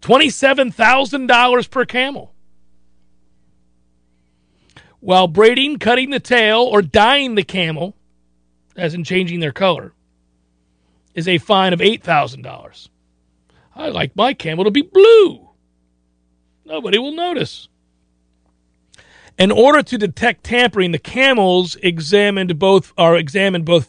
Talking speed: 110 wpm